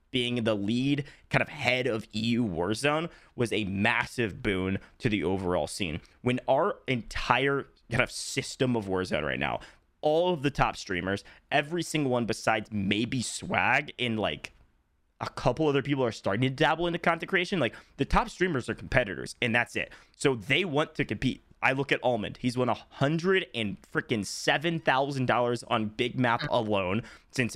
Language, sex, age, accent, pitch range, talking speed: English, male, 20-39, American, 110-150 Hz, 180 wpm